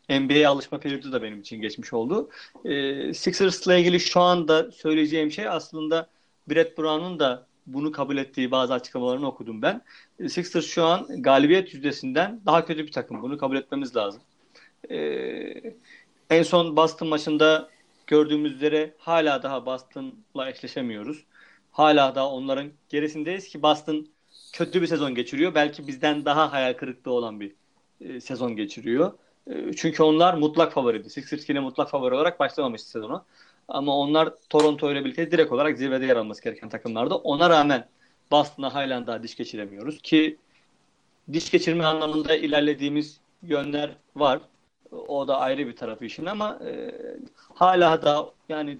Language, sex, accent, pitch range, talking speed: Turkish, male, native, 140-170 Hz, 145 wpm